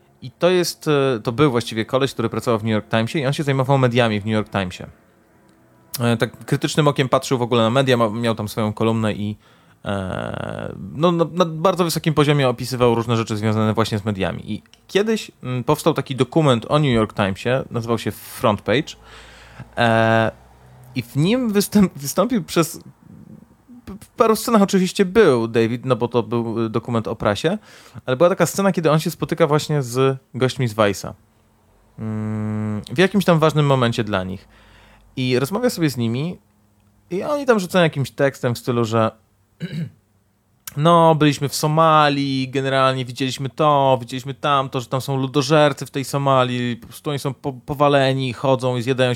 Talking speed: 170 wpm